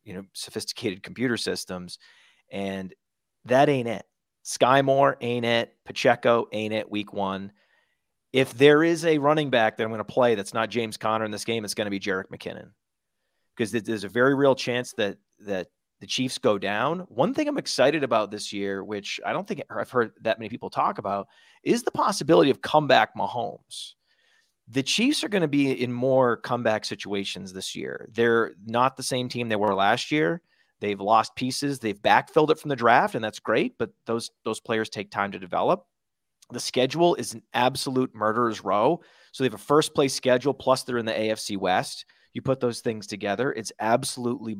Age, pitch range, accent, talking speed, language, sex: 30-49, 105-135 Hz, American, 195 wpm, English, male